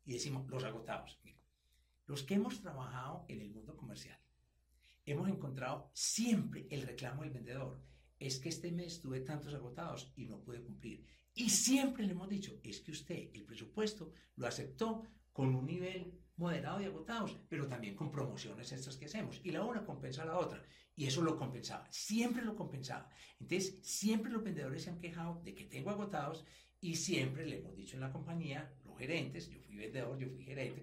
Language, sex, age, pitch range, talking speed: Spanish, male, 60-79, 130-185 Hz, 185 wpm